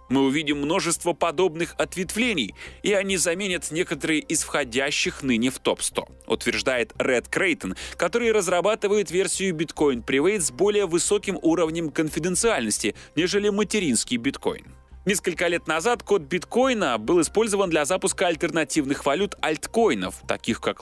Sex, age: male, 30-49